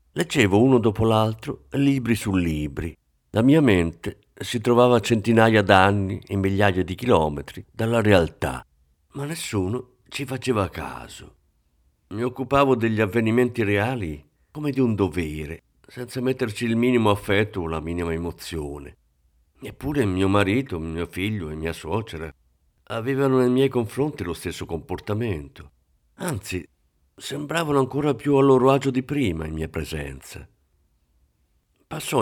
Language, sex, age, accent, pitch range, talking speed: Italian, male, 50-69, native, 80-115 Hz, 135 wpm